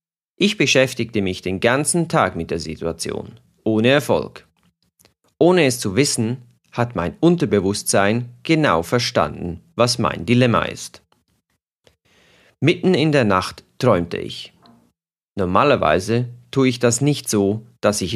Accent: German